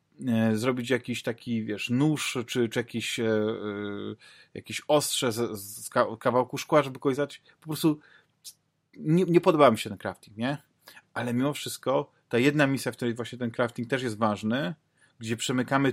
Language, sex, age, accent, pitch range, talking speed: Polish, male, 30-49, native, 115-140 Hz, 160 wpm